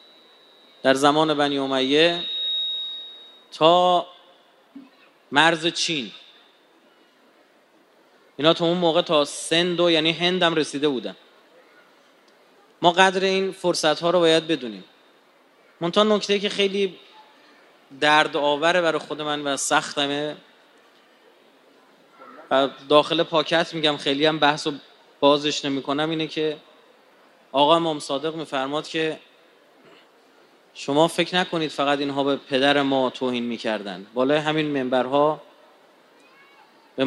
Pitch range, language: 145-175 Hz, Persian